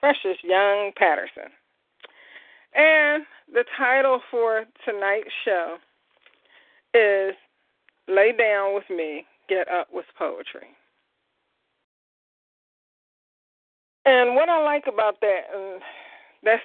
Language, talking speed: English, 90 wpm